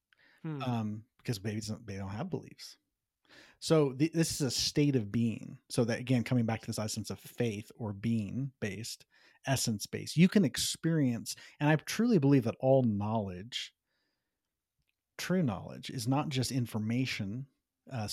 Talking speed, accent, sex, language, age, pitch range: 160 wpm, American, male, English, 40-59, 110-135 Hz